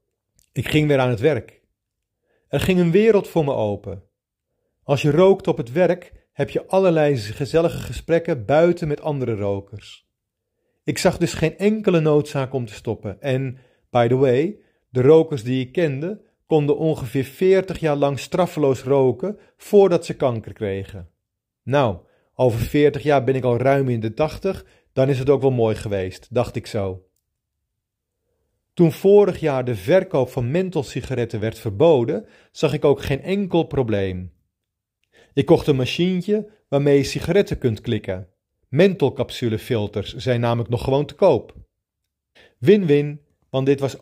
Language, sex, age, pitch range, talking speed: Dutch, male, 40-59, 115-160 Hz, 155 wpm